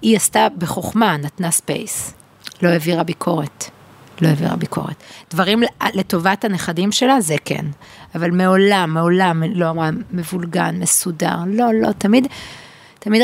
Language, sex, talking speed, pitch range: Hebrew, female, 125 wpm, 165-215 Hz